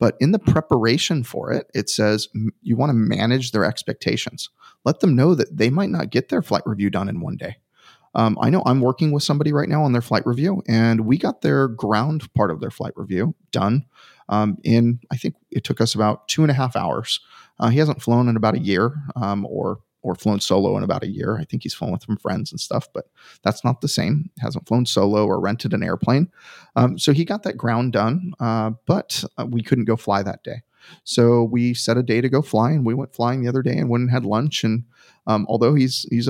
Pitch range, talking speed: 110-135 Hz, 240 wpm